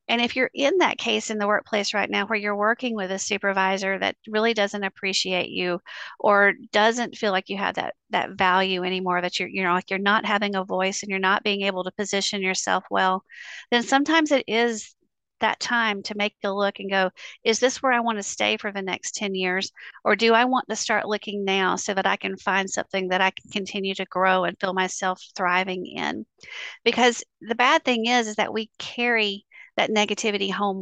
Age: 40-59